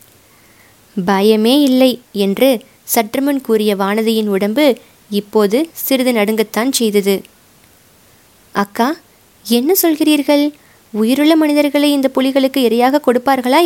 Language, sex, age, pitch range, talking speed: Tamil, female, 20-39, 205-255 Hz, 90 wpm